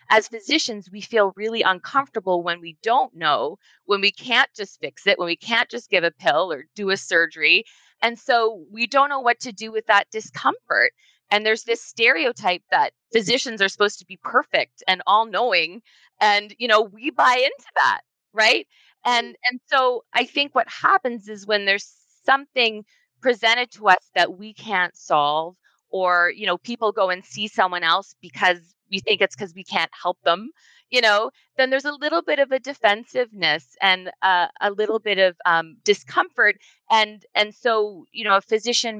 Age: 30-49